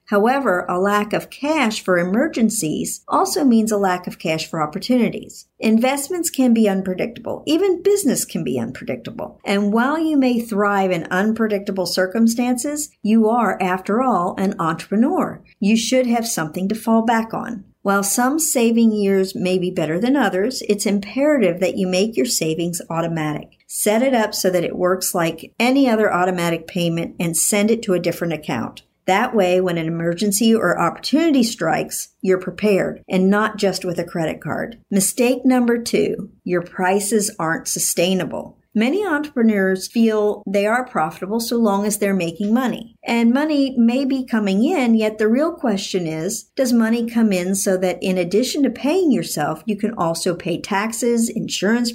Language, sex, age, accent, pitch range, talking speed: English, male, 50-69, American, 185-240 Hz, 170 wpm